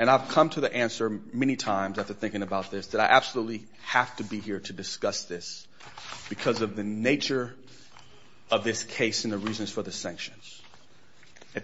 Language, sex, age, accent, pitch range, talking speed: English, male, 40-59, American, 100-130 Hz, 185 wpm